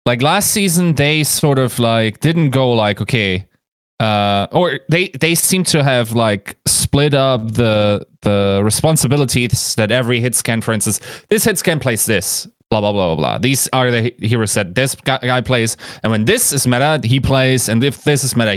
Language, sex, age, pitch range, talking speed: English, male, 20-39, 110-140 Hz, 195 wpm